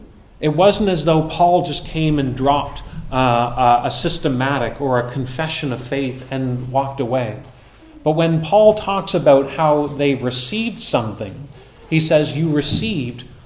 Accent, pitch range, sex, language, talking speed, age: American, 130-160 Hz, male, English, 145 wpm, 40-59